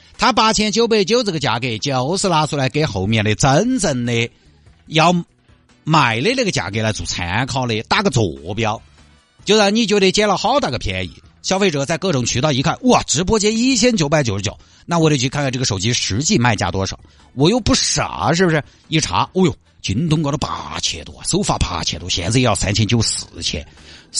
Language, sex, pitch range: Chinese, male, 95-155 Hz